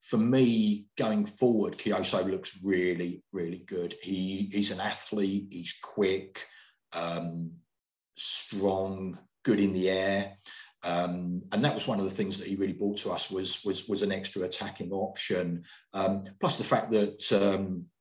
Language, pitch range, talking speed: English, 95-105 Hz, 160 wpm